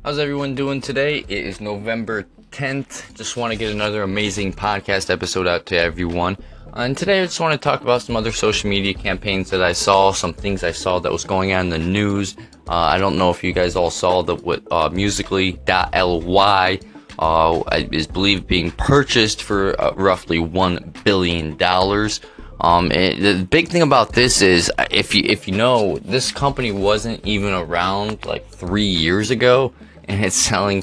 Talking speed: 185 wpm